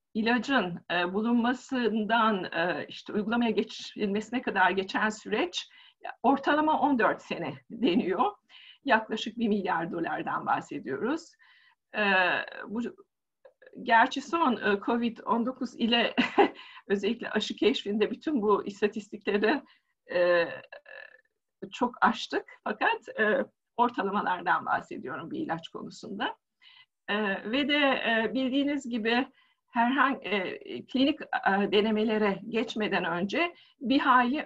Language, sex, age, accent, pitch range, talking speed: Turkish, female, 50-69, native, 205-265 Hz, 85 wpm